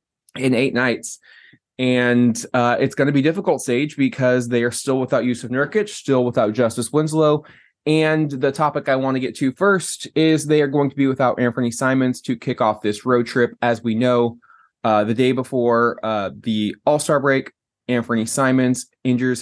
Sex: male